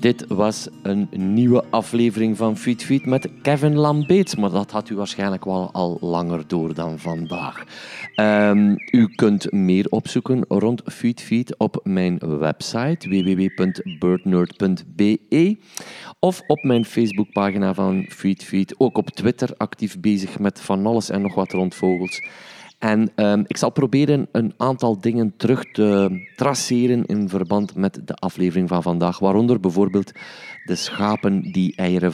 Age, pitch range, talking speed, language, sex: 40-59, 95-120 Hz, 145 wpm, Dutch, male